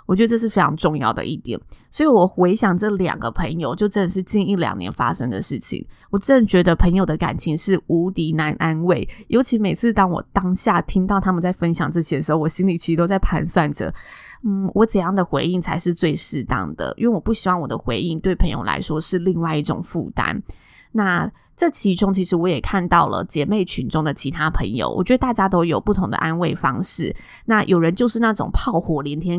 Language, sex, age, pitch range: Chinese, female, 20-39, 165-200 Hz